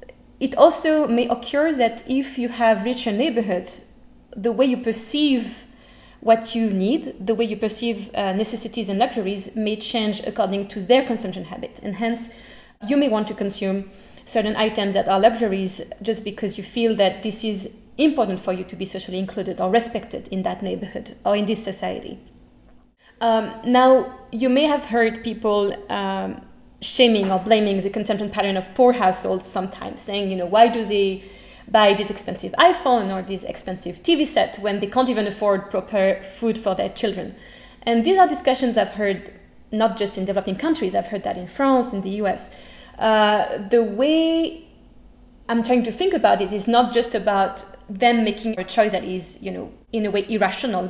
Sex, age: female, 20-39